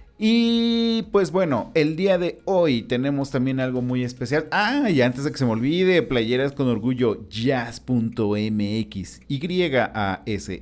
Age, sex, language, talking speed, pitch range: 40-59, male, Spanish, 155 wpm, 95-130 Hz